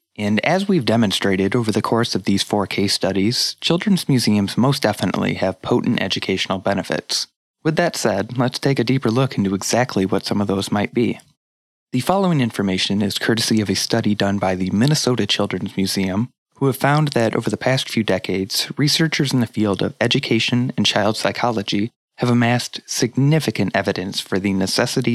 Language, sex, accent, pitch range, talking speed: English, male, American, 100-125 Hz, 180 wpm